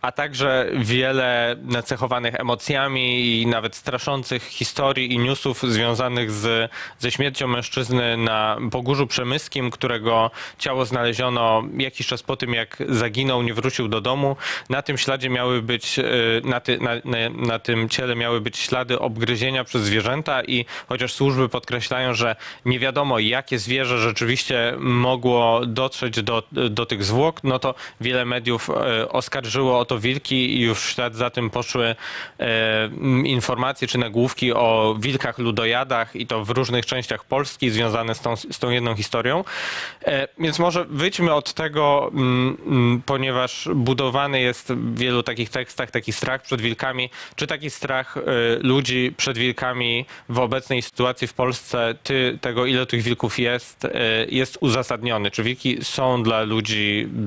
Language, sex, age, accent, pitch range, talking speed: Polish, male, 20-39, native, 120-130 Hz, 145 wpm